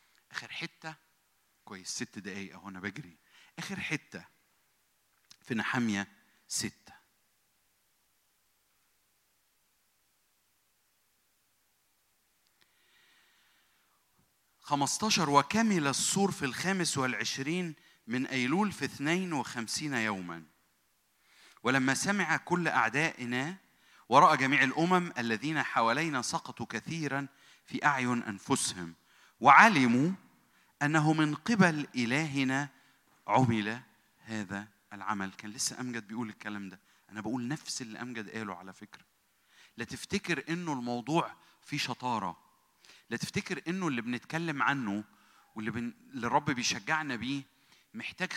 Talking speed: 90 wpm